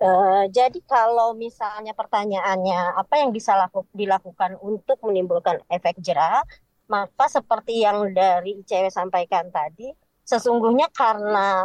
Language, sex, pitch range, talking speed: Indonesian, male, 190-250 Hz, 110 wpm